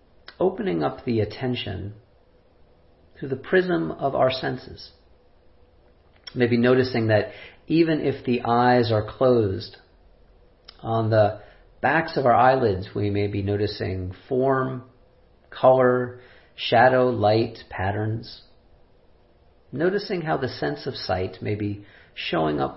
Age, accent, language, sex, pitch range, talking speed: 40-59, American, English, male, 95-120 Hz, 115 wpm